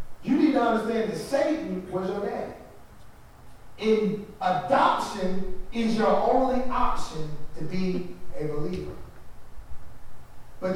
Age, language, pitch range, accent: 30-49, English, 155-200 Hz, American